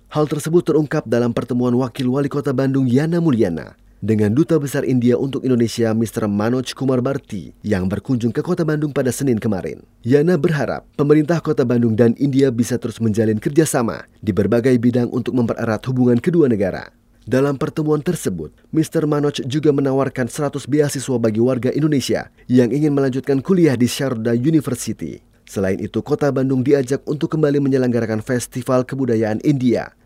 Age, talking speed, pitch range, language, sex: 30-49, 155 wpm, 115-145 Hz, Indonesian, male